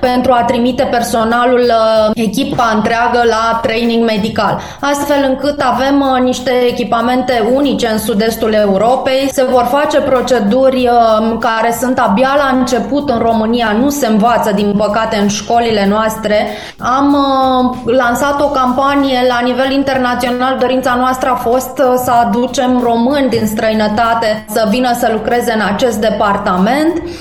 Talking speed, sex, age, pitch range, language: 130 wpm, female, 20-39, 225-260 Hz, Romanian